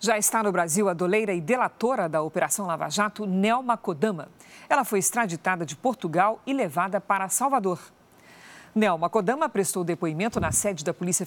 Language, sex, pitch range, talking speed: Portuguese, female, 170-225 Hz, 165 wpm